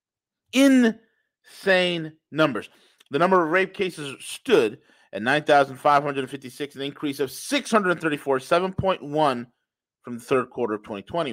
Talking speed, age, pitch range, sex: 110 wpm, 40-59, 140-190 Hz, male